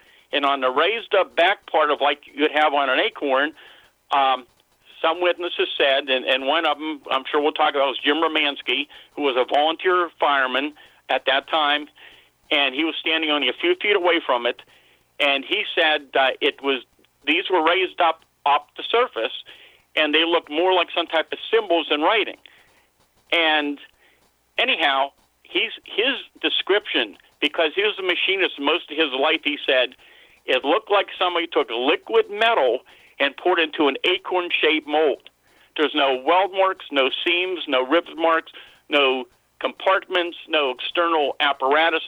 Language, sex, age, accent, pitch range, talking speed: English, male, 50-69, American, 145-190 Hz, 165 wpm